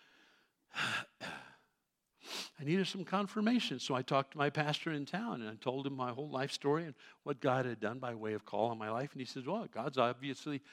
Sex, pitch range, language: male, 125-165 Hz, English